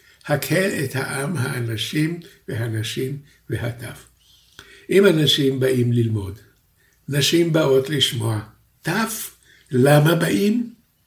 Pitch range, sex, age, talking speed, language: 115-150 Hz, male, 60-79, 85 wpm, Hebrew